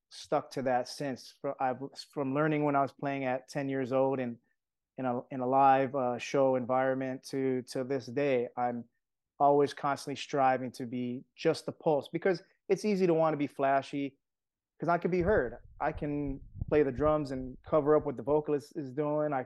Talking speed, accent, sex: 190 wpm, American, male